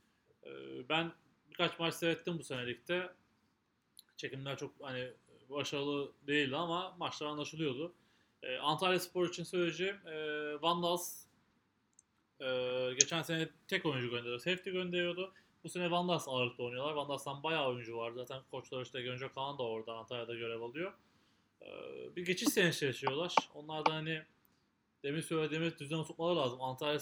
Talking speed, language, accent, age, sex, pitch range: 140 wpm, Turkish, native, 30-49, male, 135-165 Hz